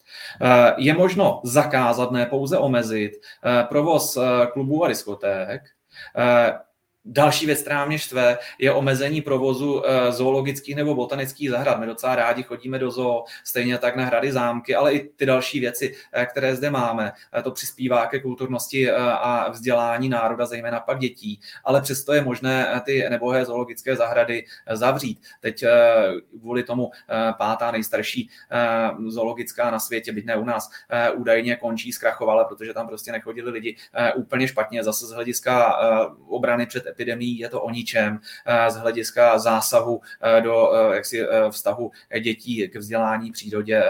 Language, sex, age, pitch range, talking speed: Czech, male, 20-39, 120-140 Hz, 145 wpm